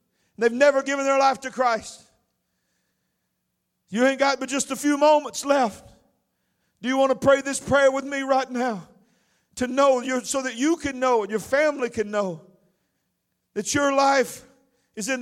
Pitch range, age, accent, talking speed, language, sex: 165-245 Hz, 50-69, American, 175 wpm, English, male